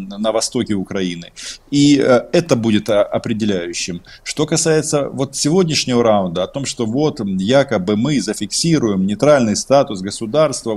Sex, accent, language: male, native, Russian